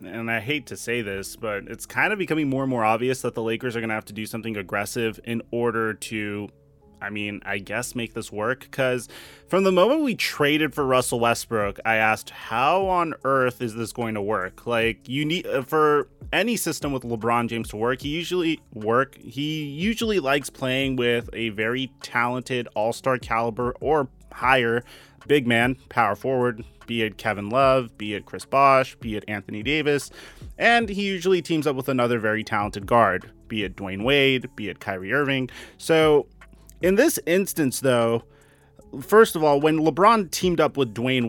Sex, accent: male, American